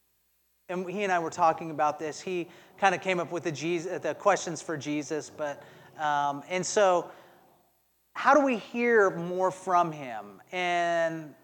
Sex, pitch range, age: male, 145-180 Hz, 30-49